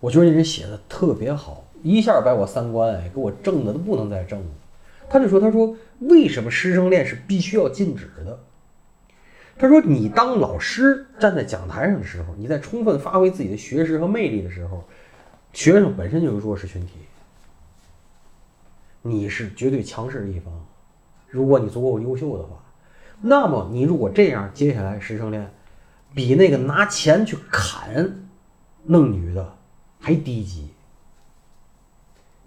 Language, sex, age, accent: Chinese, male, 30-49, native